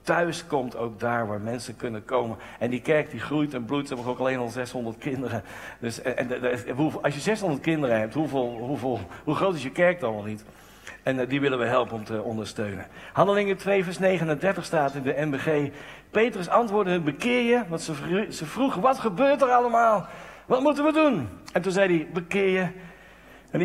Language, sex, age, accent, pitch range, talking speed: Dutch, male, 60-79, Dutch, 130-185 Hz, 200 wpm